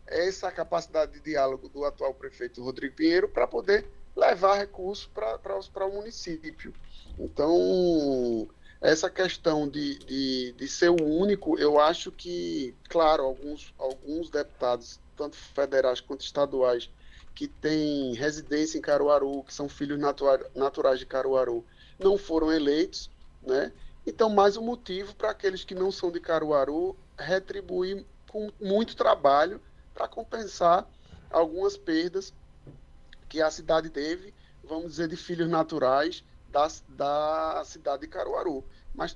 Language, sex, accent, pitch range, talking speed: Portuguese, male, Brazilian, 145-195 Hz, 130 wpm